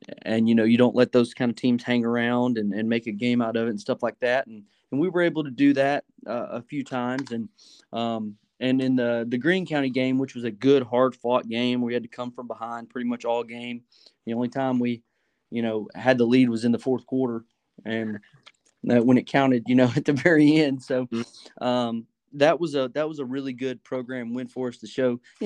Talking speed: 245 wpm